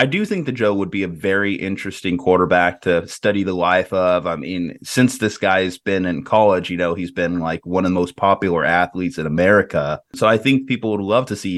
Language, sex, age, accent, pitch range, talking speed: English, male, 20-39, American, 90-115 Hz, 235 wpm